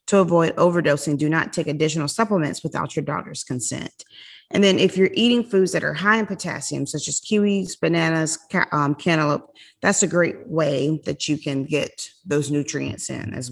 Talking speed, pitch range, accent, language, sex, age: 180 wpm, 140-185 Hz, American, English, female, 30-49